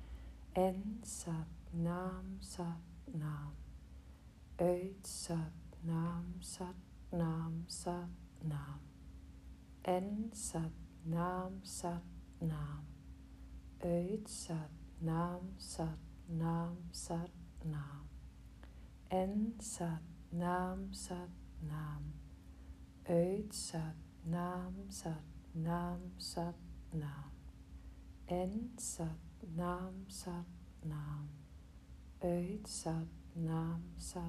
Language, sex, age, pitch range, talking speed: Dutch, female, 40-59, 140-175 Hz, 70 wpm